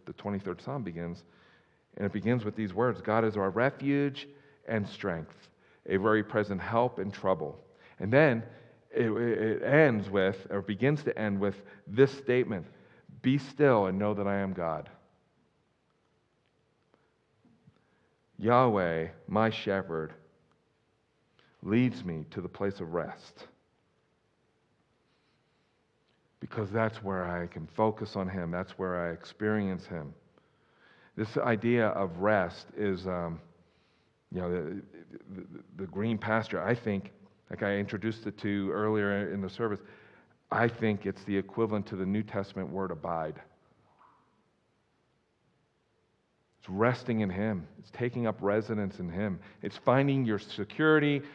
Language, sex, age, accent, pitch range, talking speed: English, male, 50-69, American, 95-115 Hz, 135 wpm